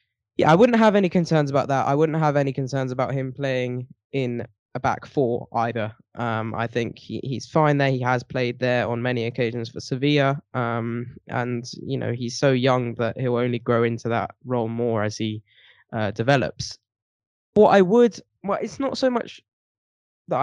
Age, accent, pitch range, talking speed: 10-29, British, 120-165 Hz, 190 wpm